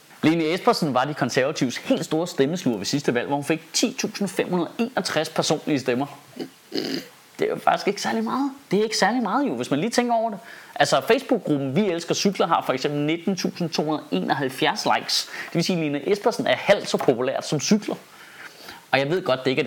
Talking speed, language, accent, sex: 200 wpm, Danish, native, male